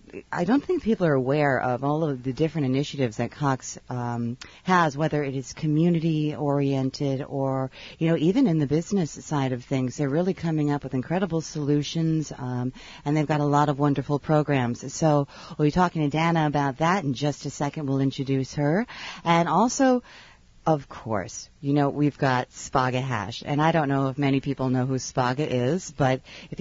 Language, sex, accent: English, female, American